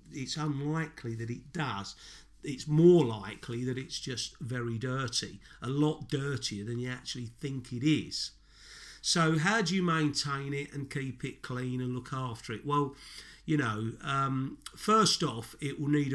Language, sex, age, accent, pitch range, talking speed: English, male, 50-69, British, 120-150 Hz, 165 wpm